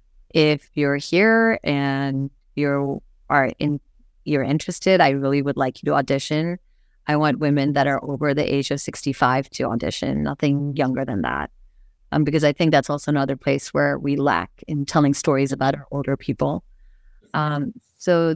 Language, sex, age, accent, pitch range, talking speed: English, female, 30-49, American, 140-160 Hz, 170 wpm